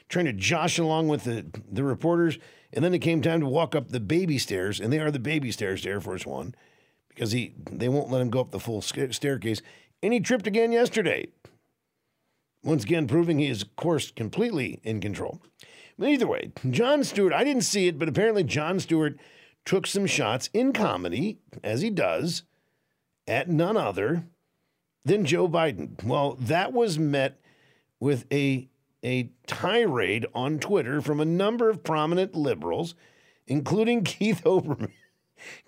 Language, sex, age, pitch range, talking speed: English, male, 50-69, 135-175 Hz, 170 wpm